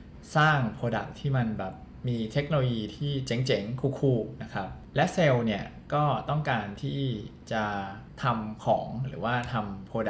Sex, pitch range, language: male, 105-130 Hz, Thai